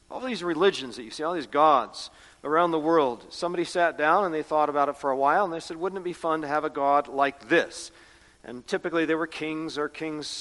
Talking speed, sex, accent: 250 wpm, male, American